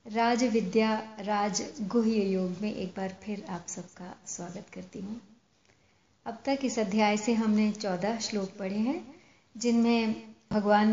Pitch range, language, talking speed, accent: 200-245 Hz, Hindi, 145 wpm, native